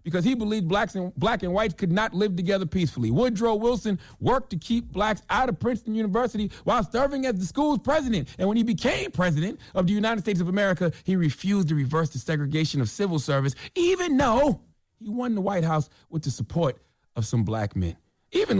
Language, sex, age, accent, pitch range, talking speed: English, male, 30-49, American, 115-190 Hz, 205 wpm